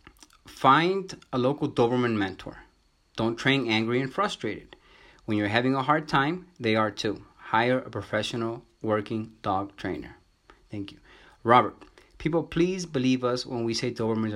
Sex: male